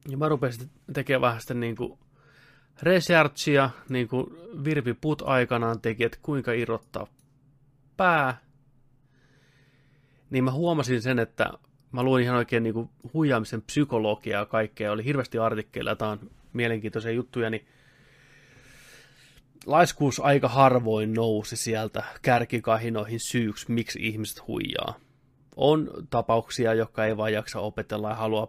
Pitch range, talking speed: 110-135 Hz, 115 wpm